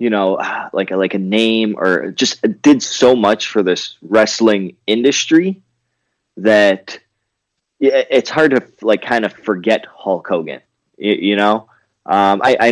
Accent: American